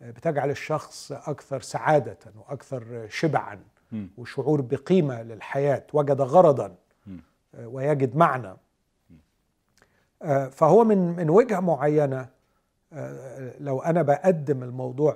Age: 40-59